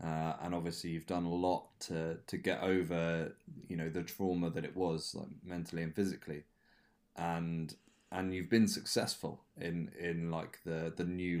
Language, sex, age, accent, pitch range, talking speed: English, male, 20-39, British, 85-100 Hz, 175 wpm